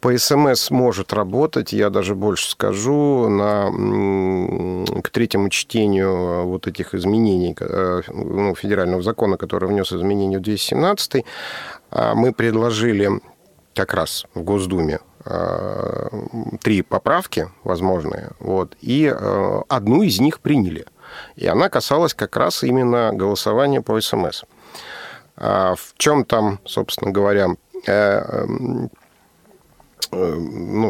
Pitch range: 95-115 Hz